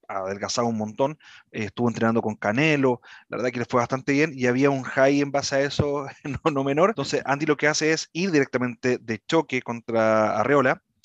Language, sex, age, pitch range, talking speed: Spanish, male, 30-49, 120-145 Hz, 195 wpm